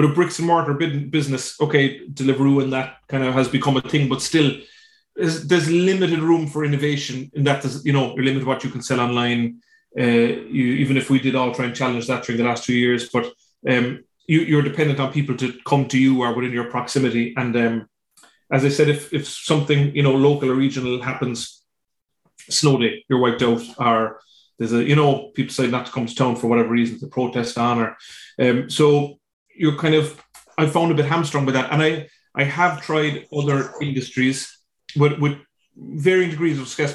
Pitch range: 125-150 Hz